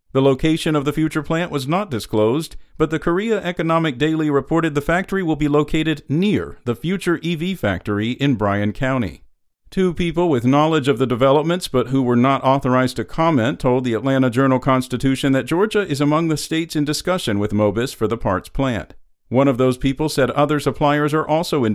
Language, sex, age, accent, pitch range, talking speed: English, male, 50-69, American, 120-165 Hz, 195 wpm